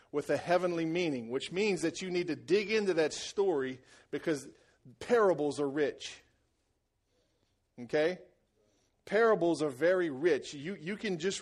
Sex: male